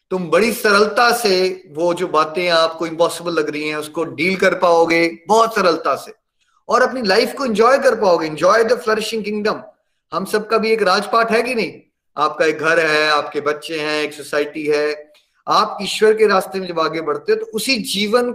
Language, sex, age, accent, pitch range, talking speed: Hindi, male, 30-49, native, 165-225 Hz, 195 wpm